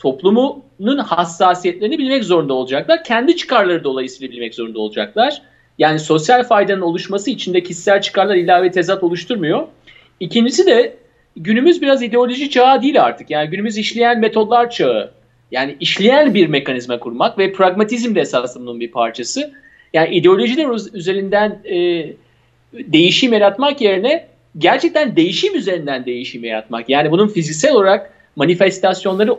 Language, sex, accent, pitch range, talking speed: Turkish, male, native, 170-235 Hz, 125 wpm